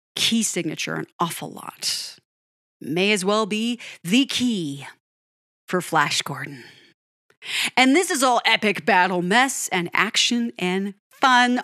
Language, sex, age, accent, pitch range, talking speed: English, female, 30-49, American, 190-265 Hz, 130 wpm